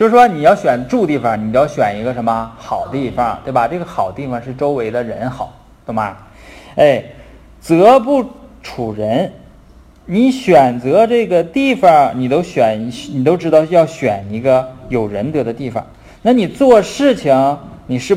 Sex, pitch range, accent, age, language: male, 115-165 Hz, native, 20-39, Chinese